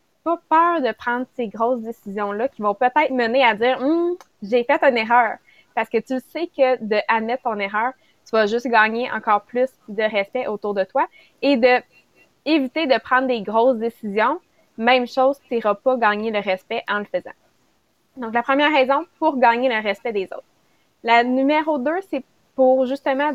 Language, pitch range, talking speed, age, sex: English, 225-275 Hz, 185 wpm, 20-39, female